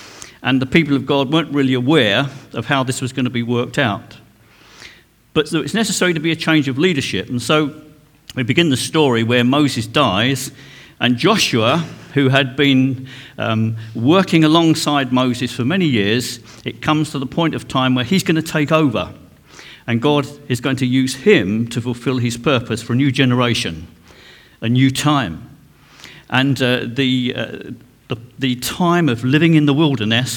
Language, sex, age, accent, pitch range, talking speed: English, male, 50-69, British, 120-150 Hz, 180 wpm